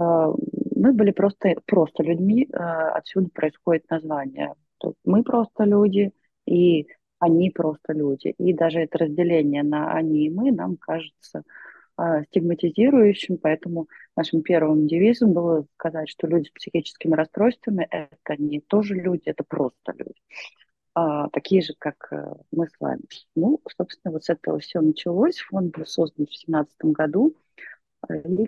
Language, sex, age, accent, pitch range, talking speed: Russian, female, 30-49, native, 155-205 Hz, 135 wpm